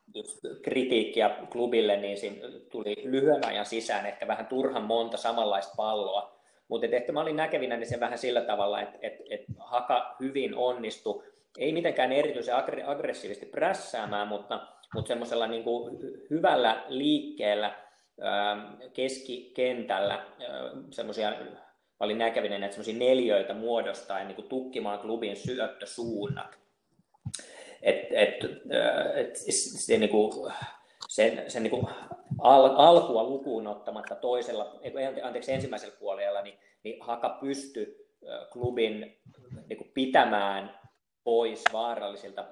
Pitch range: 105-140 Hz